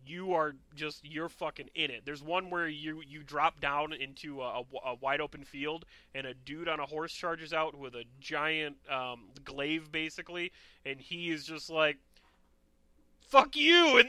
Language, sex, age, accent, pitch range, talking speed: English, male, 30-49, American, 135-175 Hz, 180 wpm